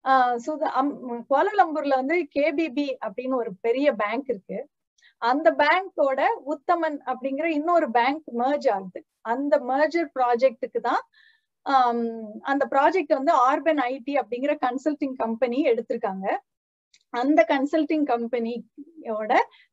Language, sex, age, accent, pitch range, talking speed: Tamil, female, 30-49, native, 235-315 Hz, 95 wpm